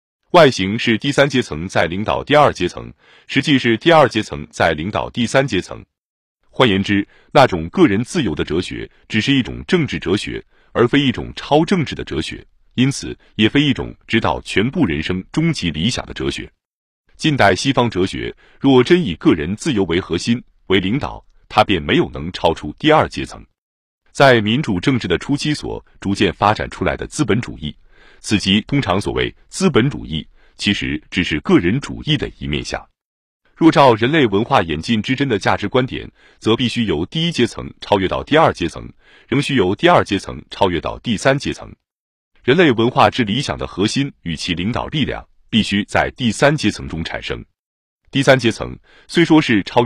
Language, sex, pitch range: Chinese, male, 90-135 Hz